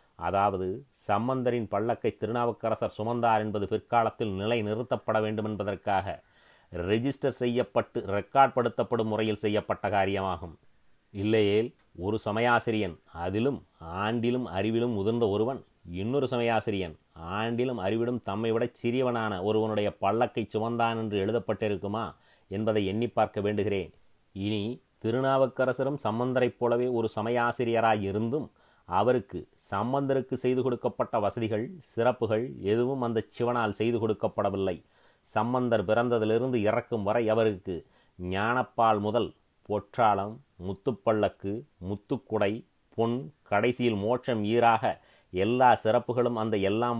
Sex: male